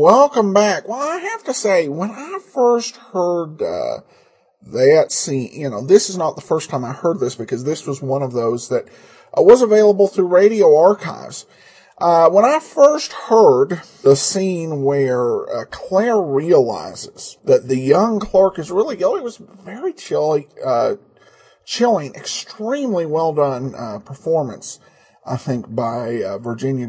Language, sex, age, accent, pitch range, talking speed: English, male, 40-59, American, 155-235 Hz, 150 wpm